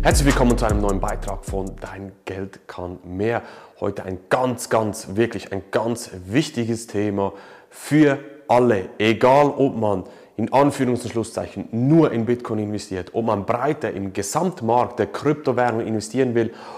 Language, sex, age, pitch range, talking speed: German, male, 30-49, 110-140 Hz, 150 wpm